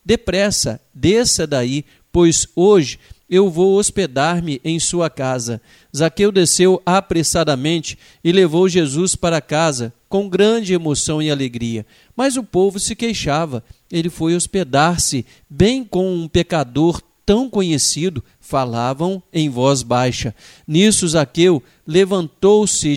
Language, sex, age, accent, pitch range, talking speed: Portuguese, male, 50-69, Brazilian, 145-185 Hz, 120 wpm